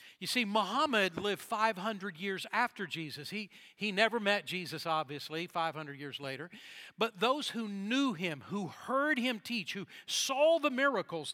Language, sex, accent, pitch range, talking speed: English, male, American, 175-240 Hz, 160 wpm